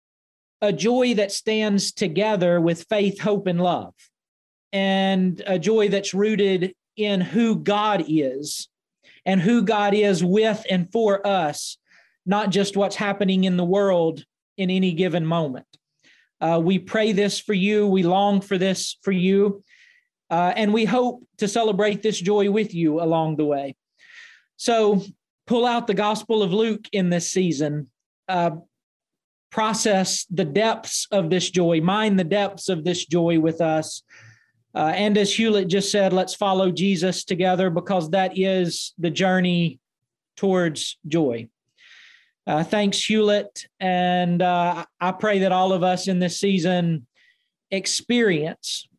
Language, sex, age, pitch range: English, male, 40-59, 175-205 Hz